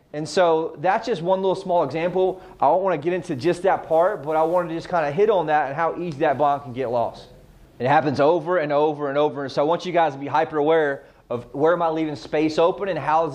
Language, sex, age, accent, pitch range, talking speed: English, male, 30-49, American, 145-170 Hz, 280 wpm